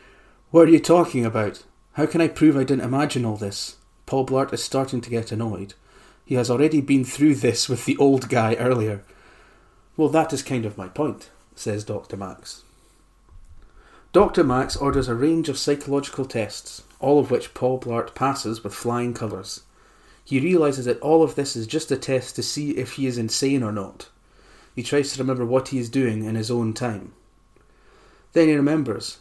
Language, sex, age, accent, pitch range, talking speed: English, male, 30-49, British, 115-140 Hz, 190 wpm